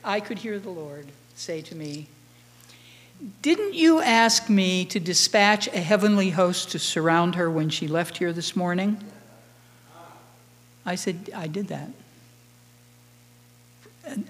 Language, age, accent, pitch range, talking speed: English, 60-79, American, 145-225 Hz, 135 wpm